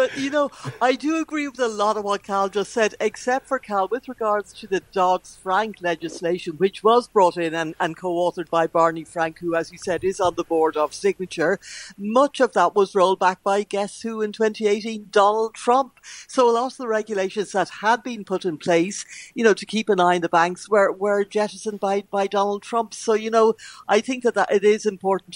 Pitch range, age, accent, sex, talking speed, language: 175-215 Hz, 60-79, British, female, 220 wpm, English